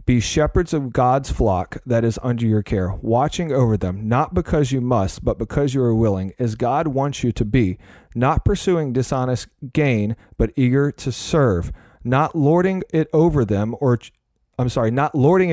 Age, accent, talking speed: 40-59, American, 180 wpm